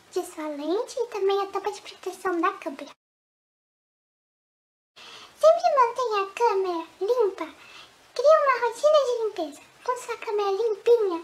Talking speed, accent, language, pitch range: 130 wpm, Brazilian, Portuguese, 355-455 Hz